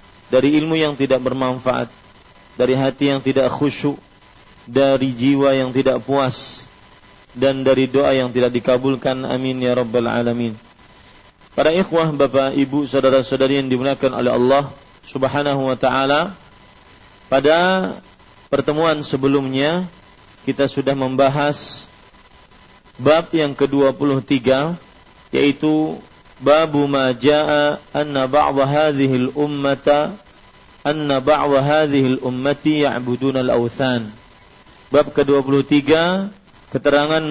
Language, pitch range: Malay, 130-150 Hz